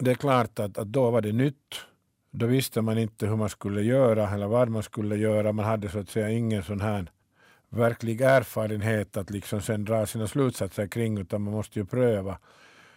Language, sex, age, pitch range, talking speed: Swedish, male, 50-69, 100-115 Hz, 205 wpm